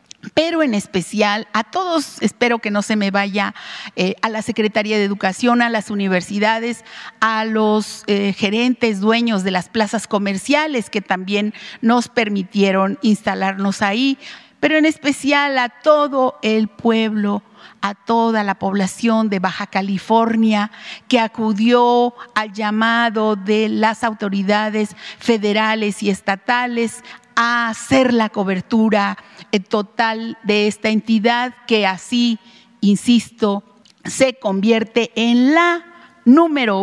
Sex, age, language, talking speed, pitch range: female, 50-69, Spanish, 120 wpm, 205-235 Hz